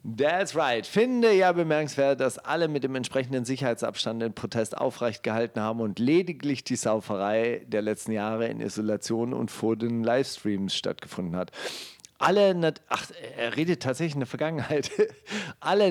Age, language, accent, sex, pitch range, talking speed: 40-59, German, German, male, 115-140 Hz, 155 wpm